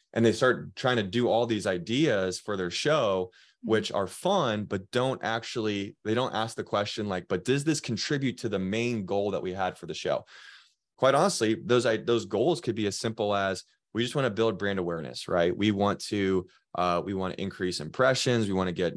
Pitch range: 95-115 Hz